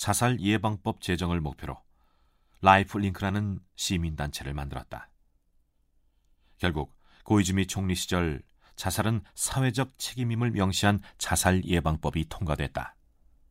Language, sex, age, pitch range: Korean, male, 40-59, 75-100 Hz